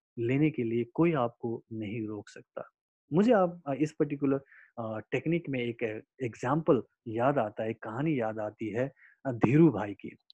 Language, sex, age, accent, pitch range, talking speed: Hindi, male, 30-49, native, 120-180 Hz, 150 wpm